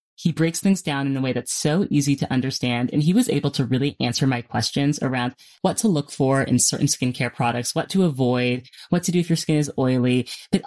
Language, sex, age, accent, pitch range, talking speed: English, female, 20-39, American, 130-165 Hz, 235 wpm